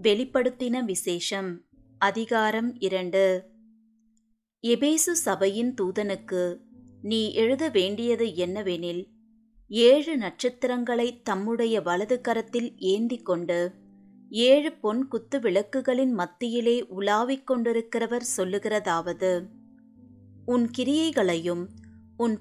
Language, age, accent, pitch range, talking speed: Tamil, 30-49, native, 185-255 Hz, 75 wpm